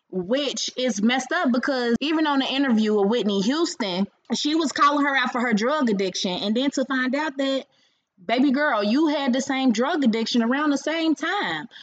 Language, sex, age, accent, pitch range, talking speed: English, female, 20-39, American, 205-275 Hz, 200 wpm